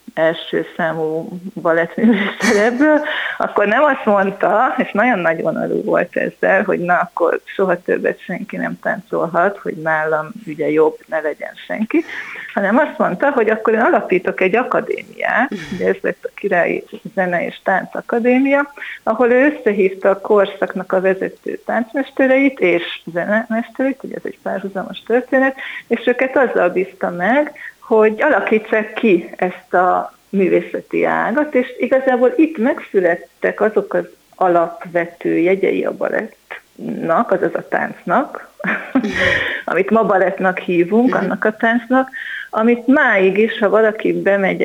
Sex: female